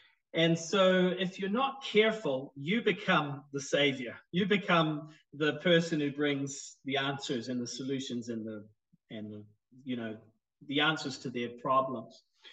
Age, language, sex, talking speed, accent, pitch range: 40-59, English, male, 155 wpm, Australian, 120-160 Hz